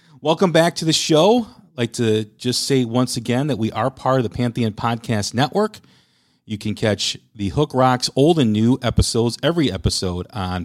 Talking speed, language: 190 wpm, English